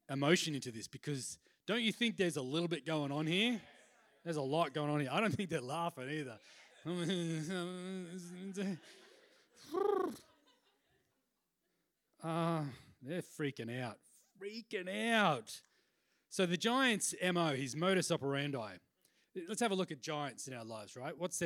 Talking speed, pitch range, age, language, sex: 140 wpm, 145-220 Hz, 30-49, English, male